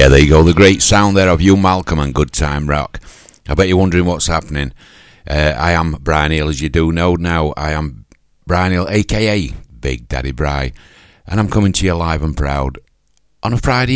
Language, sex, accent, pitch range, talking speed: English, male, British, 70-85 Hz, 215 wpm